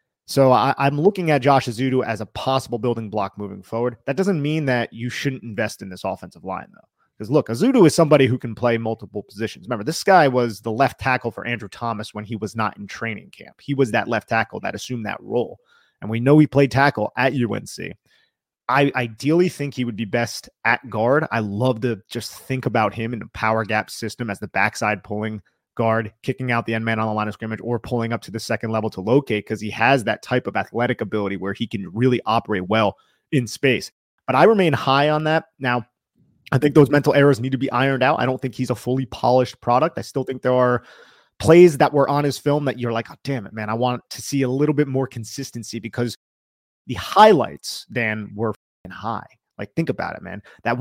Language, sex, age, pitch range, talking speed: English, male, 30-49, 110-135 Hz, 230 wpm